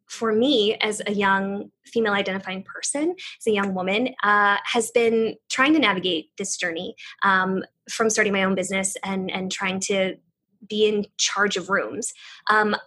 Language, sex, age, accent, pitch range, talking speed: English, female, 20-39, American, 200-240 Hz, 170 wpm